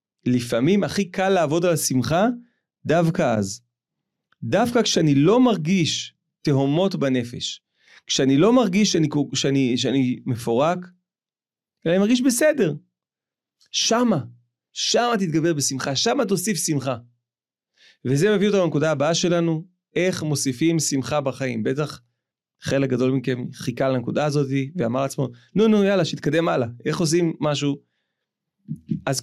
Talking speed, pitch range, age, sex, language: 125 wpm, 130-180 Hz, 30-49, male, Hebrew